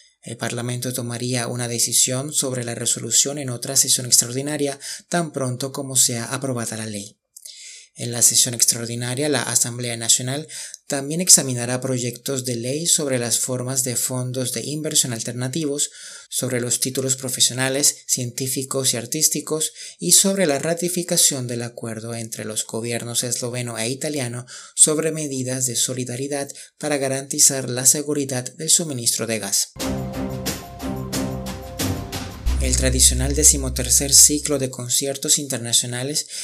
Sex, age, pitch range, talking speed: male, 30-49, 120-140 Hz, 125 wpm